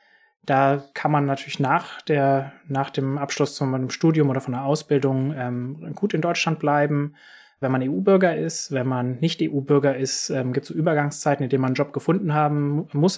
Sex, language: male, German